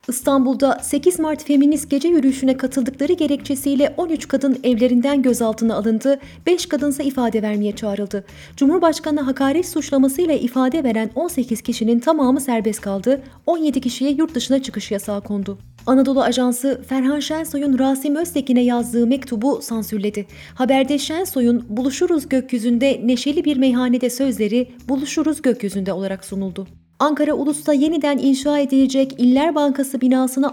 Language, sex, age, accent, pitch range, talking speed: Turkish, female, 30-49, native, 235-285 Hz, 125 wpm